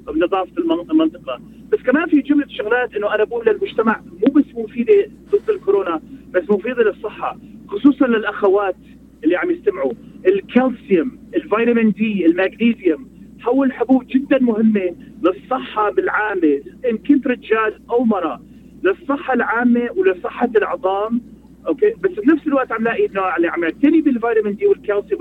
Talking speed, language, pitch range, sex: 135 wpm, Arabic, 215-280 Hz, male